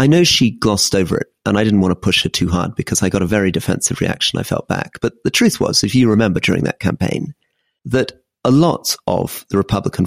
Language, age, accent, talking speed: English, 40-59, British, 245 wpm